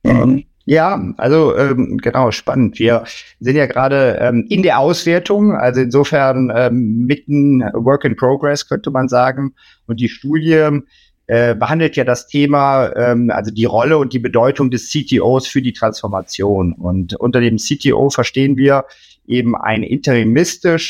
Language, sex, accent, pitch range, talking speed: German, male, German, 120-145 Hz, 145 wpm